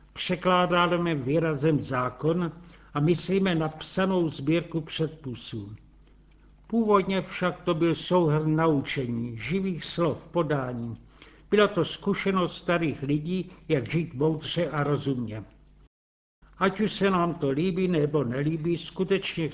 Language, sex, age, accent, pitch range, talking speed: Czech, male, 70-89, native, 145-175 Hz, 115 wpm